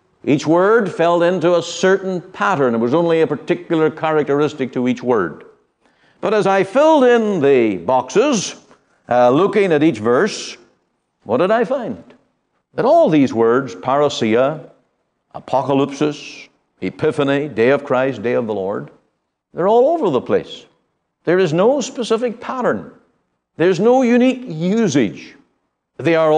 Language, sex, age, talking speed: English, male, 60-79, 140 wpm